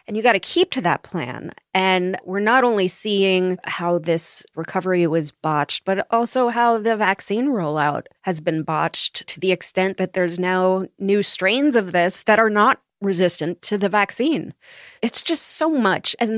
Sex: female